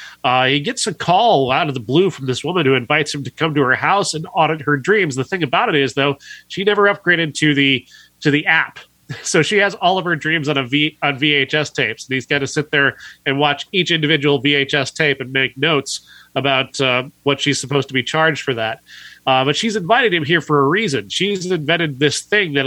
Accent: American